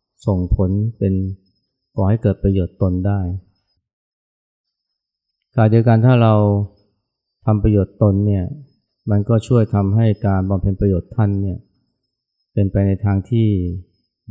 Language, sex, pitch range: Thai, male, 95-110 Hz